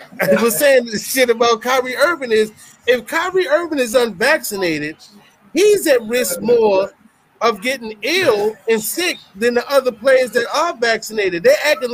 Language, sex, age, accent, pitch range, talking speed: English, male, 30-49, American, 215-295 Hz, 160 wpm